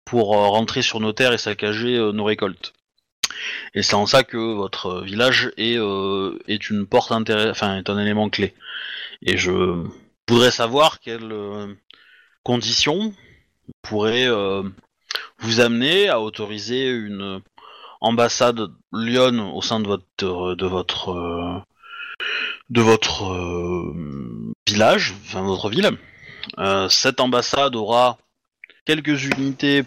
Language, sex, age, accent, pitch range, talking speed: French, male, 20-39, French, 100-120 Hz, 125 wpm